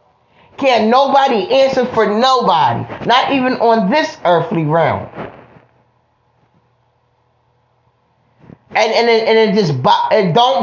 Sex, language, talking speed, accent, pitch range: male, English, 105 wpm, American, 205-260 Hz